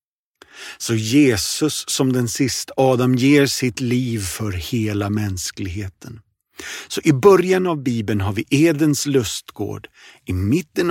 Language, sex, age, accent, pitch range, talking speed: Swedish, male, 50-69, native, 105-140 Hz, 125 wpm